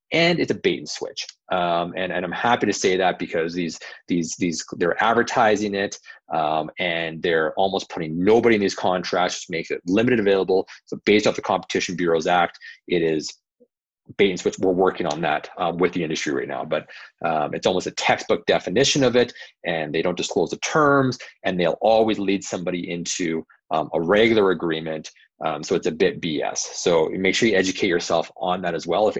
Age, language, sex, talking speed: 30-49, English, male, 205 wpm